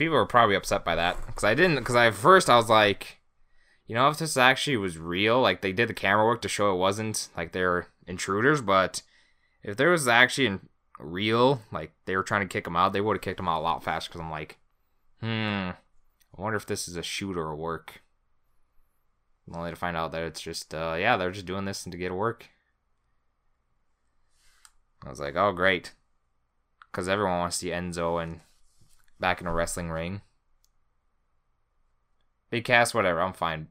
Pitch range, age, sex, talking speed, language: 80-105 Hz, 20-39, male, 200 wpm, English